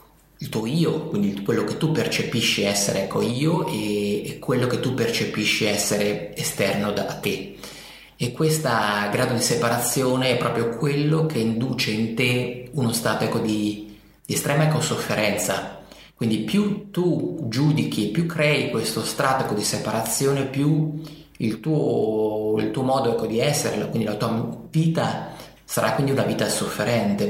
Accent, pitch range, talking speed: native, 110-140 Hz, 155 wpm